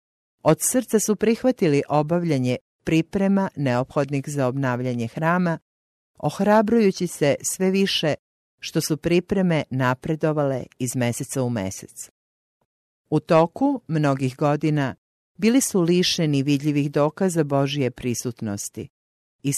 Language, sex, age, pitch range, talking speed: English, female, 50-69, 125-170 Hz, 105 wpm